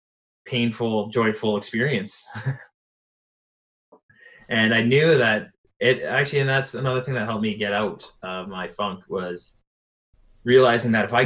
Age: 20-39